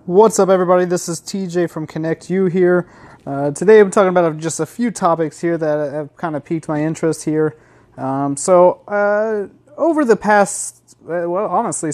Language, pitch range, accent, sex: English, 140-185 Hz, American, male